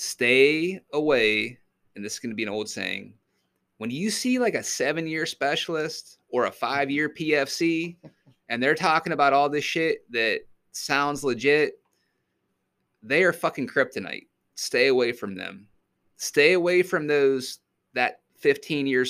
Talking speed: 145 wpm